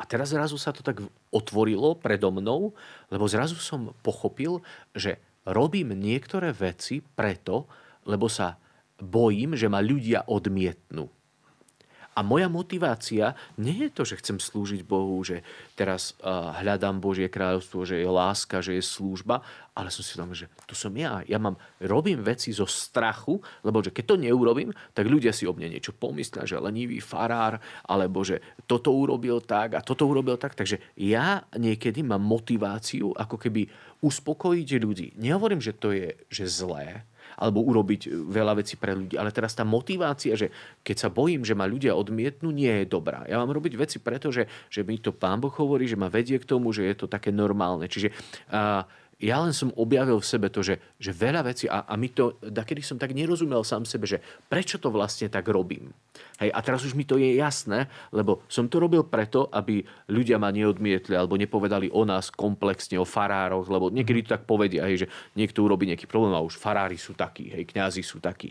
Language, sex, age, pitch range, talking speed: Slovak, male, 40-59, 100-130 Hz, 190 wpm